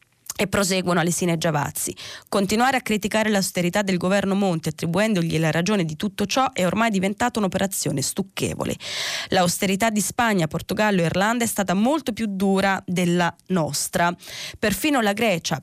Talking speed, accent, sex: 150 wpm, native, female